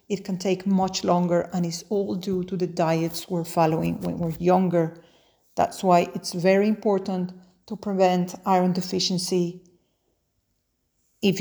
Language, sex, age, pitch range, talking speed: English, female, 40-59, 175-200 Hz, 140 wpm